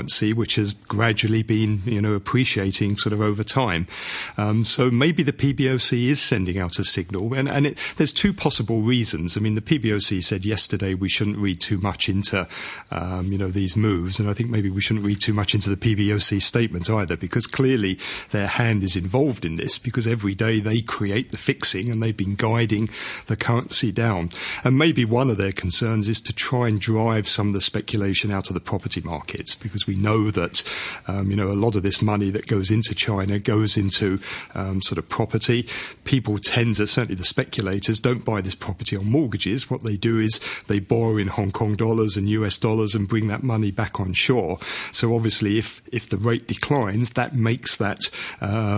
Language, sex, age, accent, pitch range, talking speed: English, male, 40-59, British, 100-120 Hz, 210 wpm